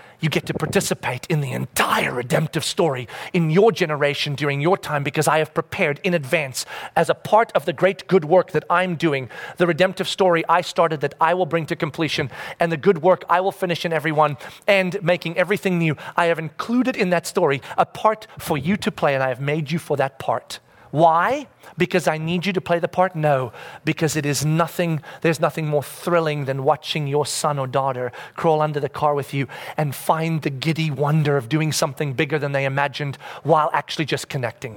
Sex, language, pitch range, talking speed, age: male, English, 140-175 Hz, 210 wpm, 40-59